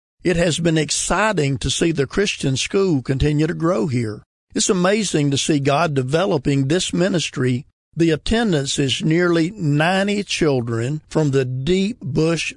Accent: American